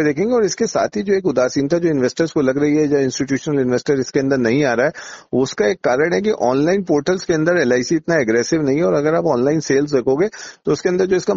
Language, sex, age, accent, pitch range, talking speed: Hindi, male, 40-59, native, 130-165 Hz, 155 wpm